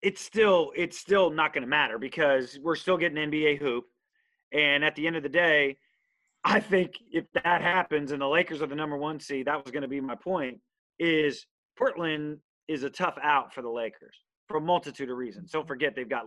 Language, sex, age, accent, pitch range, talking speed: English, male, 30-49, American, 130-160 Hz, 220 wpm